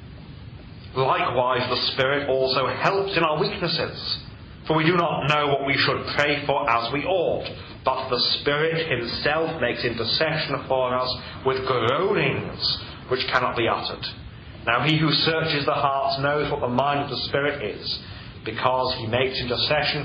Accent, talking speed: British, 160 wpm